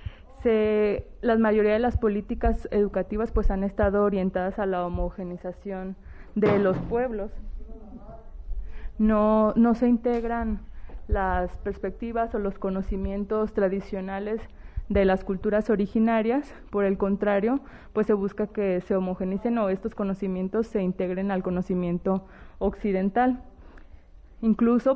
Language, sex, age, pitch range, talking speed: Spanish, female, 20-39, 195-225 Hz, 115 wpm